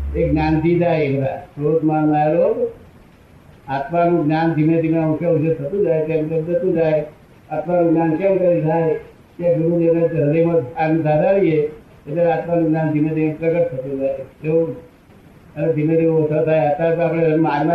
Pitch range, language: 155-170 Hz, Gujarati